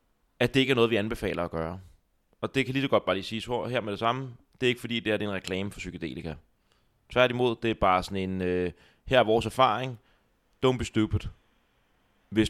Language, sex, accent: Danish, male, native